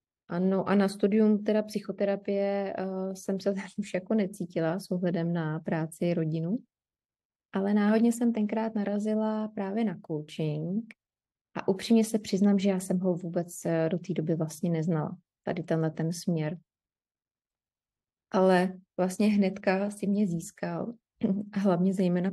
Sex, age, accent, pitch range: female, 20-39, native, 180-210 Hz